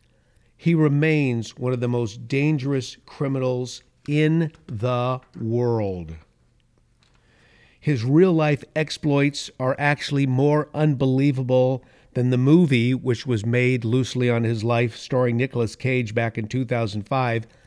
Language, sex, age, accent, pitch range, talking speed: English, male, 50-69, American, 115-145 Hz, 115 wpm